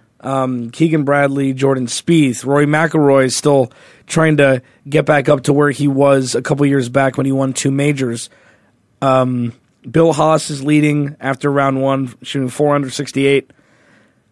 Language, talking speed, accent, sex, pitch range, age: English, 155 wpm, American, male, 130-155 Hz, 20-39